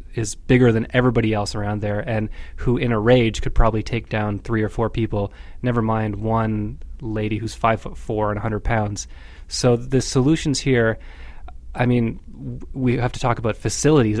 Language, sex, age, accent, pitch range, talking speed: English, male, 20-39, American, 105-125 Hz, 180 wpm